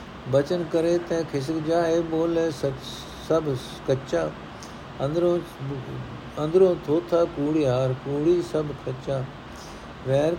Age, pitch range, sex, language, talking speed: 60-79, 130-165 Hz, male, Punjabi, 90 wpm